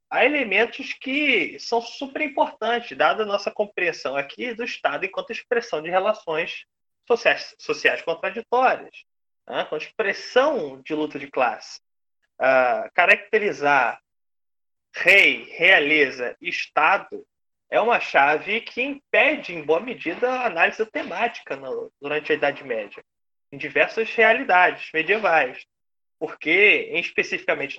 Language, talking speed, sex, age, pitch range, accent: Portuguese, 120 wpm, male, 20-39, 170-255 Hz, Brazilian